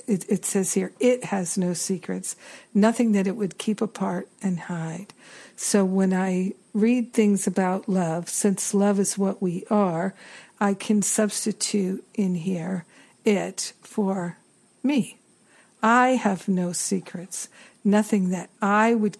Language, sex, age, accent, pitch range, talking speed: English, female, 60-79, American, 180-215 Hz, 140 wpm